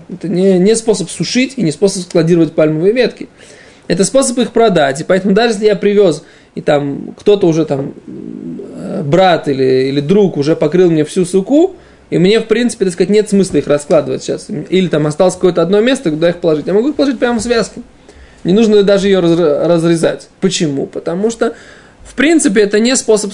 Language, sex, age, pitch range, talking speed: Russian, male, 20-39, 165-215 Hz, 195 wpm